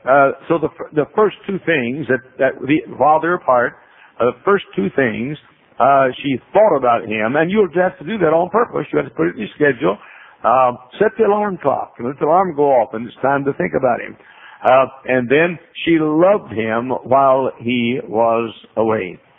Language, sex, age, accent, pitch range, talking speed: English, male, 60-79, American, 125-165 Hz, 205 wpm